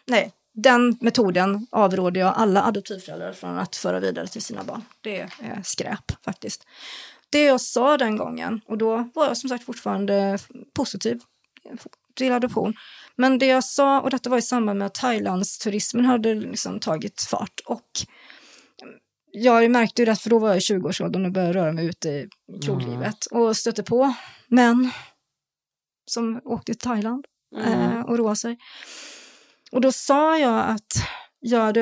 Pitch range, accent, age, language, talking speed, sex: 195-245 Hz, native, 30-49, Swedish, 160 wpm, female